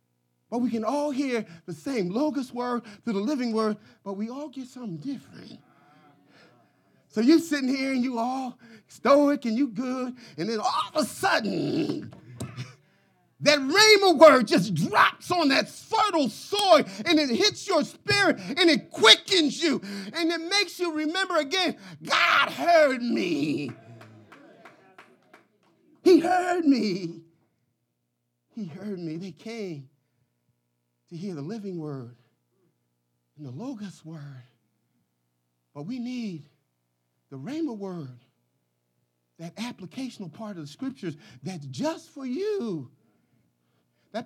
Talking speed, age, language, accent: 130 wpm, 40-59, English, American